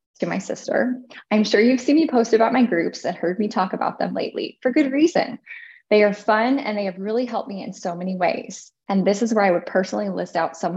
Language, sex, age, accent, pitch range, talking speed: English, female, 20-39, American, 195-255 Hz, 250 wpm